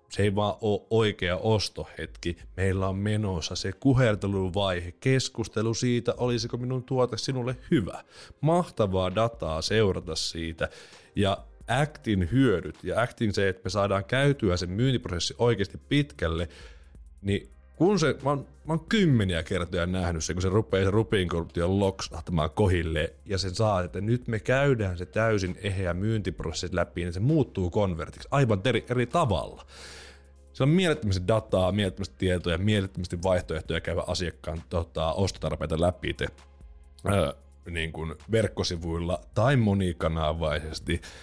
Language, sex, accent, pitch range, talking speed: Finnish, male, native, 80-110 Hz, 135 wpm